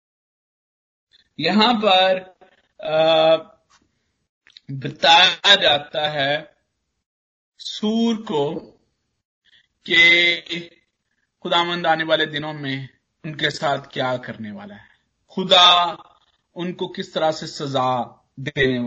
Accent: native